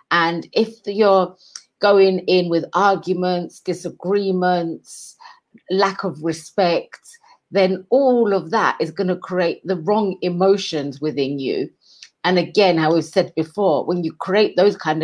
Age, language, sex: 40-59, English, female